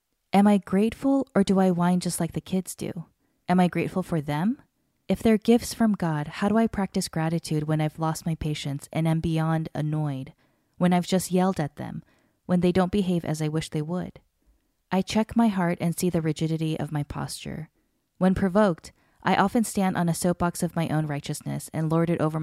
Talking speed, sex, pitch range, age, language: 210 wpm, female, 155-190 Hz, 20-39, English